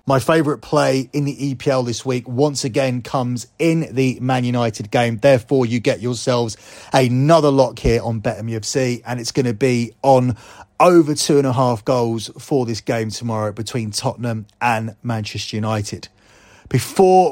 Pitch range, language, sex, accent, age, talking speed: 120-145 Hz, English, male, British, 30-49, 165 wpm